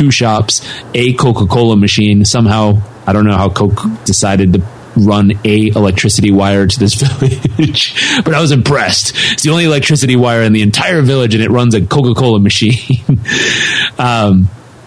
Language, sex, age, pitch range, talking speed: English, male, 30-49, 105-130 Hz, 160 wpm